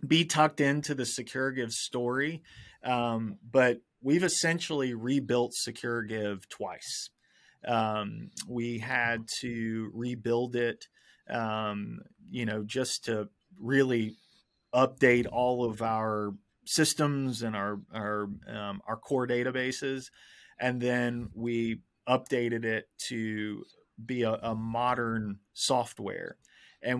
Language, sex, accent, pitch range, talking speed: English, male, American, 110-130 Hz, 110 wpm